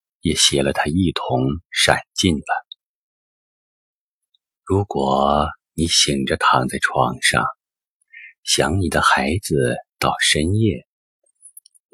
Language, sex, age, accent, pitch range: Chinese, male, 50-69, native, 70-105 Hz